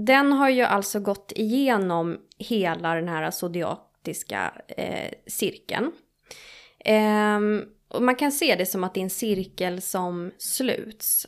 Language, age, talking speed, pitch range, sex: Swedish, 20-39, 140 wpm, 185-225 Hz, female